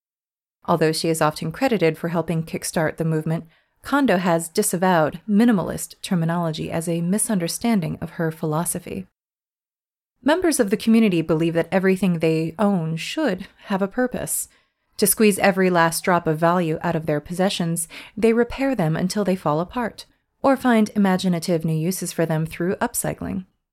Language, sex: English, female